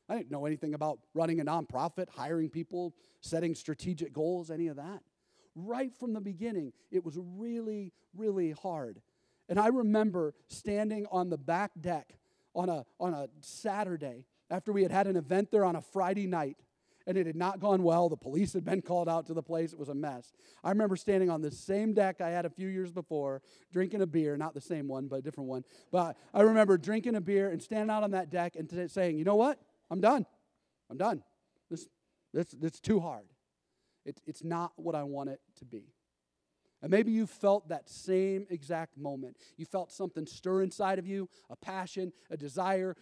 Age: 40-59